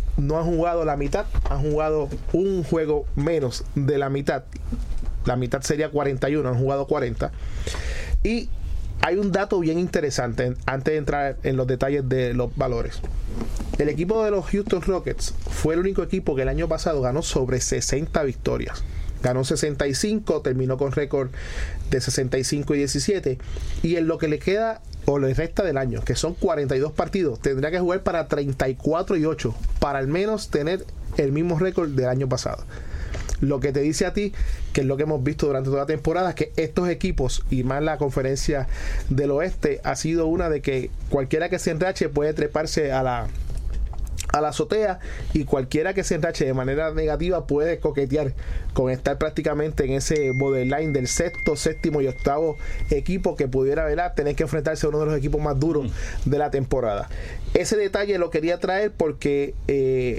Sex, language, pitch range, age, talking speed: male, Spanish, 130-165 Hz, 30-49, 180 wpm